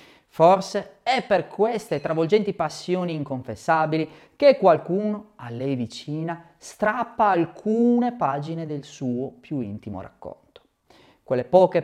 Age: 40-59